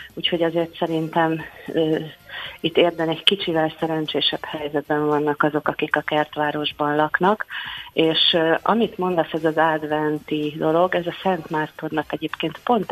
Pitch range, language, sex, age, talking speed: 150-165 Hz, Hungarian, female, 40-59, 140 wpm